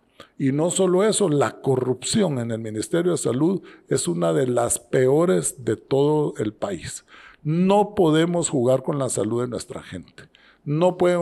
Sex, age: male, 50-69